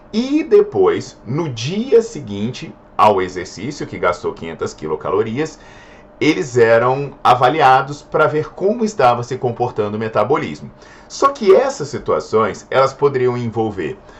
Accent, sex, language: Brazilian, male, Portuguese